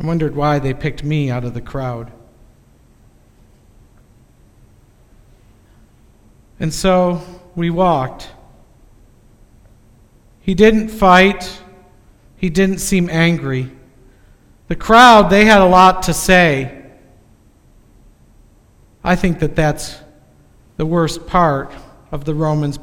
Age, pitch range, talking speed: 50-69, 120-180 Hz, 105 wpm